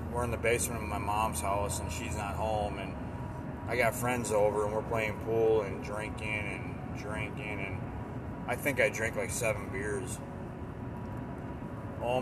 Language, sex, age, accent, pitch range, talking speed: English, male, 30-49, American, 110-125 Hz, 165 wpm